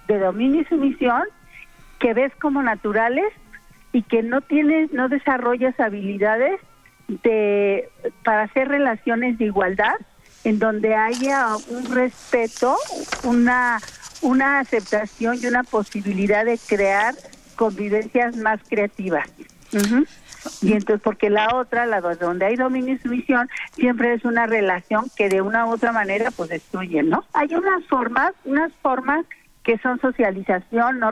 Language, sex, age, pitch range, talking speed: Spanish, female, 50-69, 215-255 Hz, 135 wpm